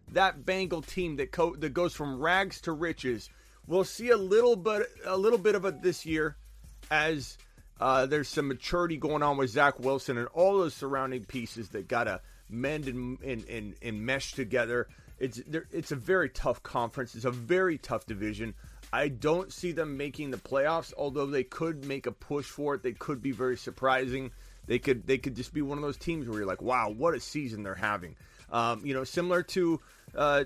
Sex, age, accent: male, 30-49, American